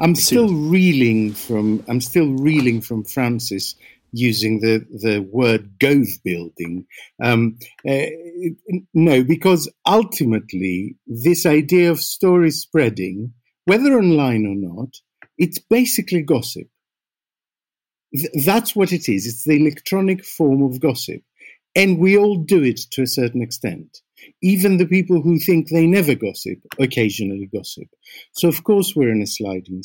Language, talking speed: English, 135 wpm